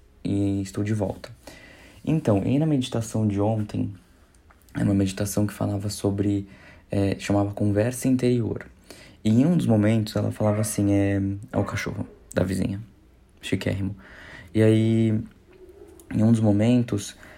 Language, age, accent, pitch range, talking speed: Portuguese, 20-39, Brazilian, 100-110 Hz, 140 wpm